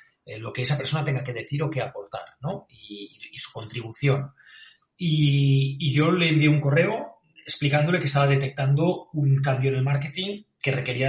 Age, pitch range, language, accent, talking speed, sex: 30-49, 130-155 Hz, Spanish, Spanish, 180 wpm, male